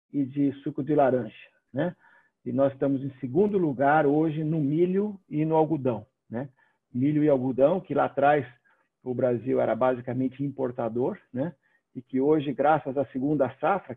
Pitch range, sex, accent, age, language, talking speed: 130-155 Hz, male, Brazilian, 50-69, Portuguese, 165 wpm